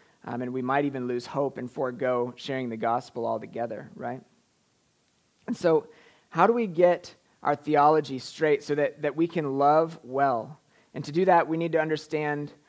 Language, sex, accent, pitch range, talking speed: English, male, American, 135-165 Hz, 180 wpm